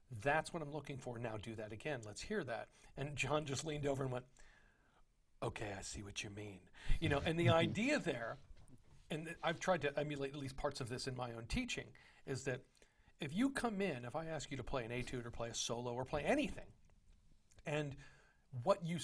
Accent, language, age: American, English, 40-59